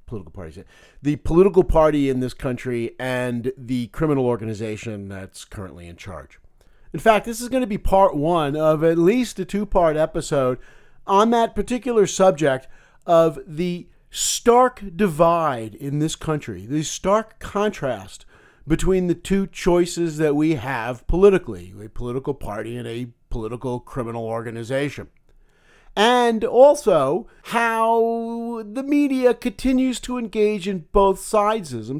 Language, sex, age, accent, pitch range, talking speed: English, male, 50-69, American, 125-205 Hz, 130 wpm